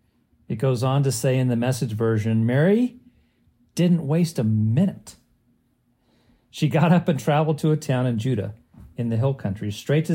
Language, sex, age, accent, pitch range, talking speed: English, male, 40-59, American, 120-160 Hz, 175 wpm